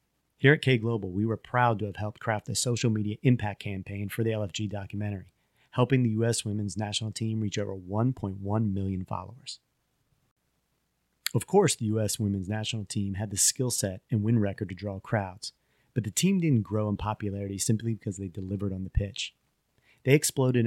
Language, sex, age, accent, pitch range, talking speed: English, male, 30-49, American, 100-120 Hz, 185 wpm